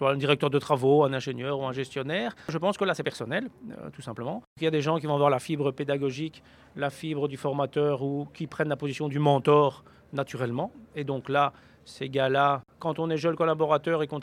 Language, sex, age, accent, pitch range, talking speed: French, male, 40-59, French, 140-170 Hz, 225 wpm